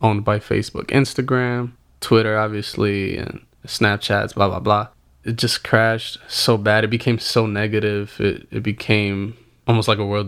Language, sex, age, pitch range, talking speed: English, male, 20-39, 100-115 Hz, 160 wpm